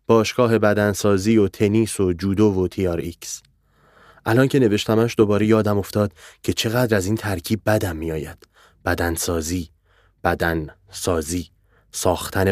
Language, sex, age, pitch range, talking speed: Persian, male, 30-49, 95-125 Hz, 125 wpm